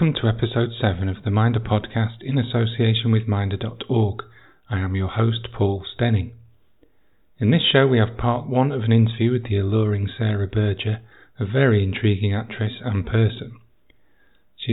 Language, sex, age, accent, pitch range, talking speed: English, male, 40-59, British, 105-120 Hz, 165 wpm